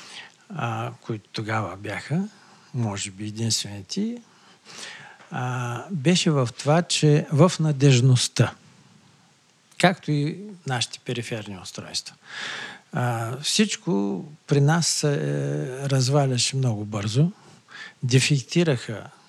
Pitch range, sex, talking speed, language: 120-155 Hz, male, 80 wpm, Bulgarian